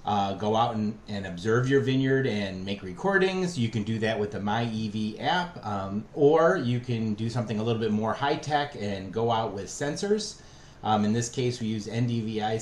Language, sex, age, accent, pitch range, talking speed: English, male, 30-49, American, 105-140 Hz, 210 wpm